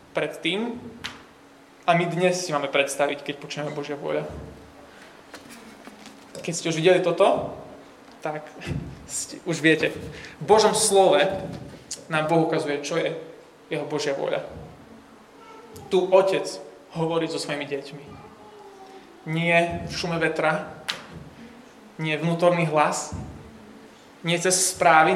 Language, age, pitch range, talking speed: Slovak, 20-39, 155-190 Hz, 110 wpm